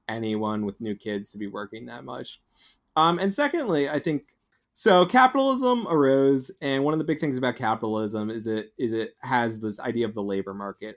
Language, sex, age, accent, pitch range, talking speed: English, male, 20-39, American, 110-145 Hz, 195 wpm